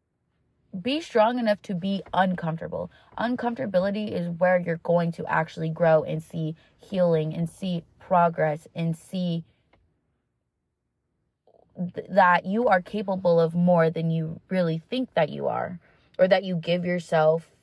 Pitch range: 165-200 Hz